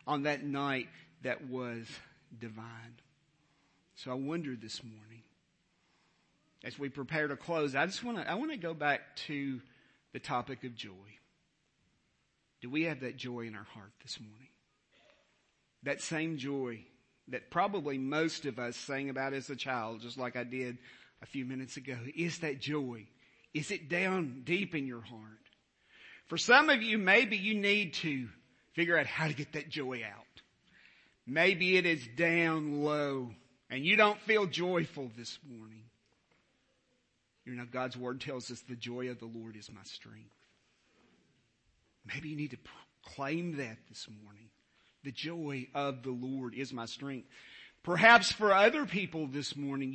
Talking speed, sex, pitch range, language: 160 wpm, male, 120-160 Hz, English